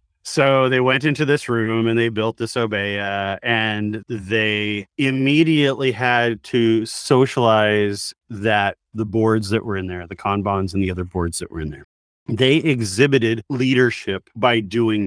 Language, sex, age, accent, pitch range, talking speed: English, male, 30-49, American, 105-125 Hz, 155 wpm